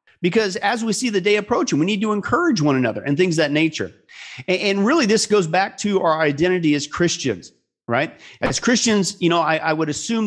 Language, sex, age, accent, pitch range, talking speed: English, male, 40-59, American, 145-180 Hz, 220 wpm